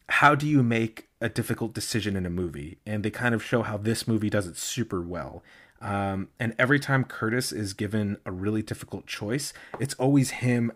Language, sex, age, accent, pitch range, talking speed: English, male, 30-49, American, 105-125 Hz, 200 wpm